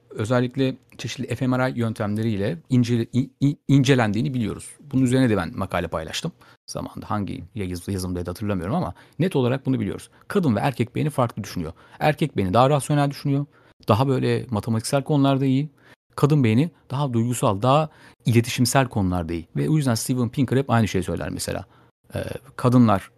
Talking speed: 155 wpm